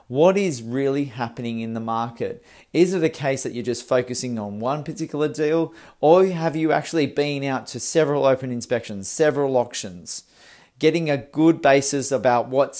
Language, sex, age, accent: English, male, 40-59, Australian